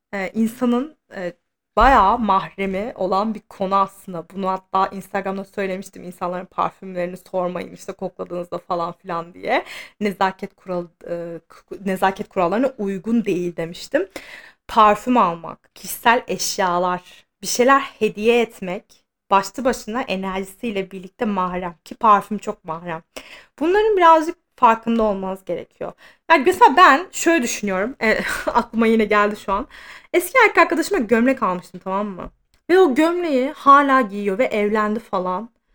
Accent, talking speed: native, 125 wpm